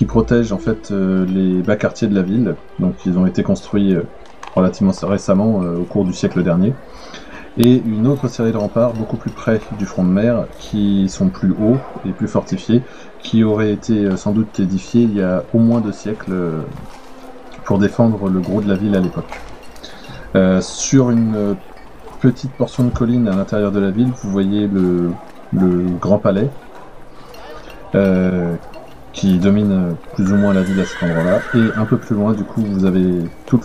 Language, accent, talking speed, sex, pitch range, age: French, French, 195 wpm, male, 95-115 Hz, 20-39